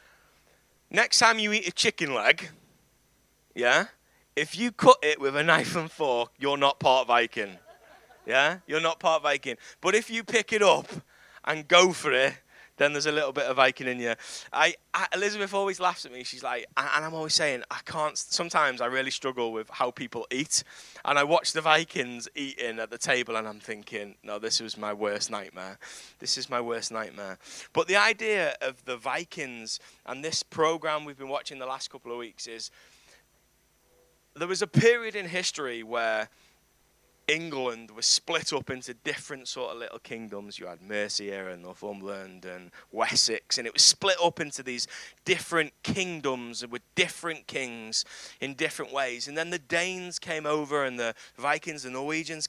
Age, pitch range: 20-39, 120-160 Hz